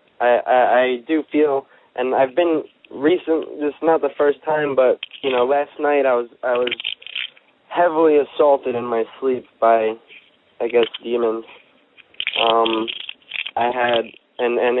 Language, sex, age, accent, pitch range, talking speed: English, male, 20-39, American, 115-135 Hz, 155 wpm